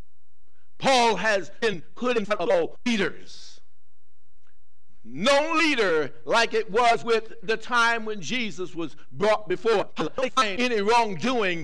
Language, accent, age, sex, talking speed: English, American, 60-79, male, 120 wpm